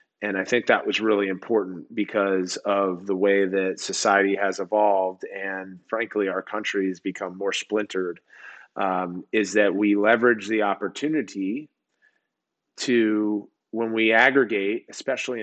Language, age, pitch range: English, 30-49, 100-110 Hz